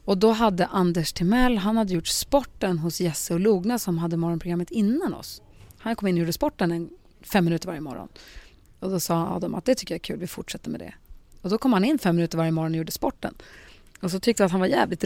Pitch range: 175-220 Hz